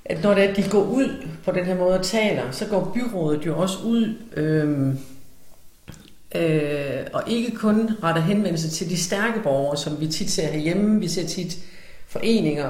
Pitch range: 155-205 Hz